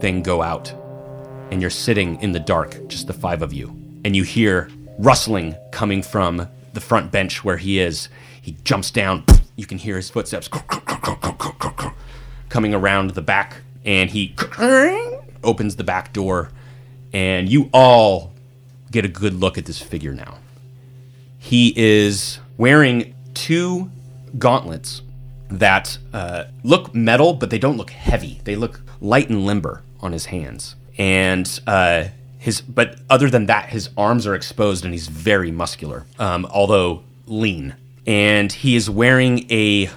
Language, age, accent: English, 30-49, American